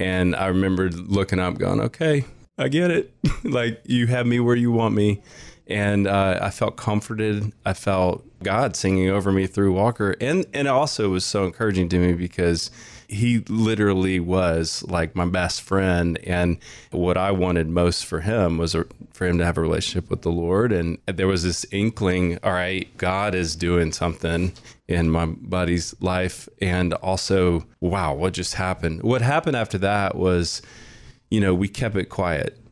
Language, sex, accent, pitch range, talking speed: English, male, American, 90-105 Hz, 175 wpm